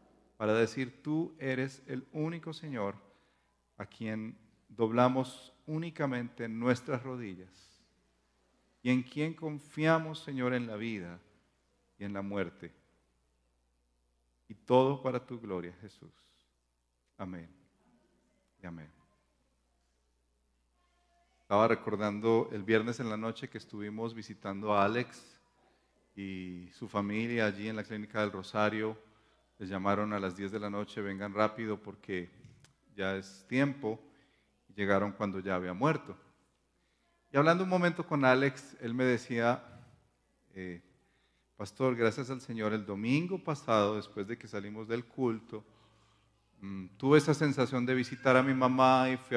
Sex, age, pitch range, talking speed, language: male, 40-59, 100-130 Hz, 130 wpm, Spanish